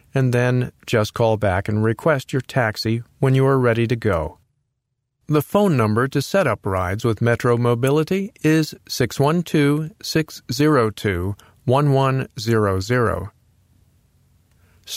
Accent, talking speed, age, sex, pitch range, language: American, 110 wpm, 40-59, male, 110-135 Hz, English